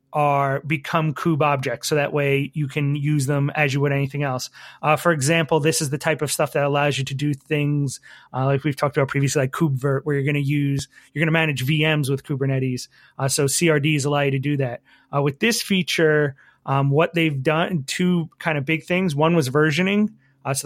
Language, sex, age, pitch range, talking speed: English, male, 30-49, 140-155 Hz, 225 wpm